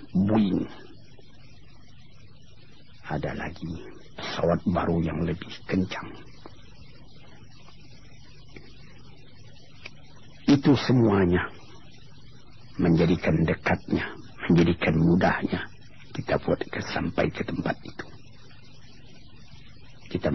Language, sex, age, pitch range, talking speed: Malay, male, 50-69, 85-125 Hz, 60 wpm